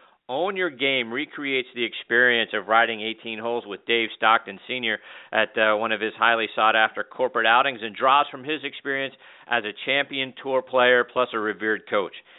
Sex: male